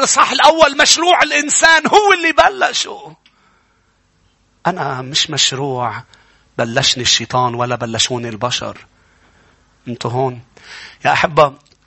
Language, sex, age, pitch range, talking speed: English, male, 30-49, 115-150 Hz, 95 wpm